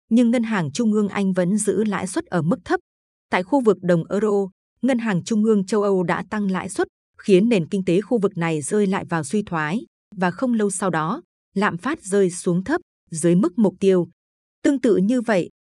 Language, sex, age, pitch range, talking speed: Vietnamese, female, 20-39, 180-225 Hz, 220 wpm